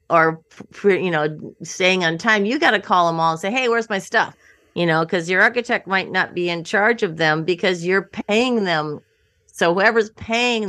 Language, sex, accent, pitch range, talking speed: English, female, American, 165-205 Hz, 215 wpm